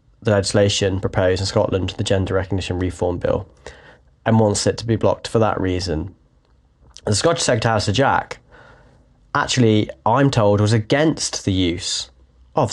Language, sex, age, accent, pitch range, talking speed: English, male, 20-39, British, 95-115 Hz, 155 wpm